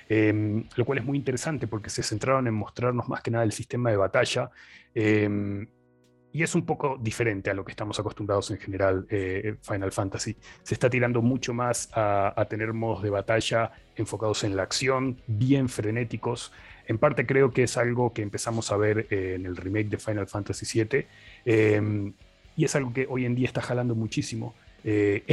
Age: 30-49